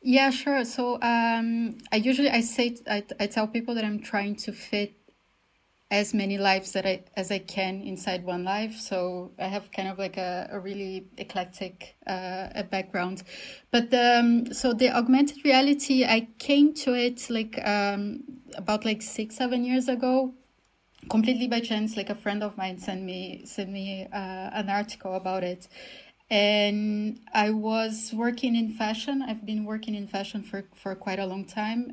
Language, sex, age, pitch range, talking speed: English, female, 20-39, 190-230 Hz, 175 wpm